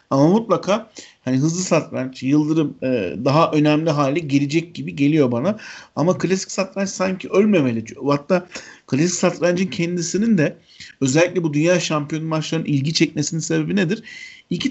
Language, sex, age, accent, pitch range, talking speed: Turkish, male, 50-69, native, 145-185 Hz, 140 wpm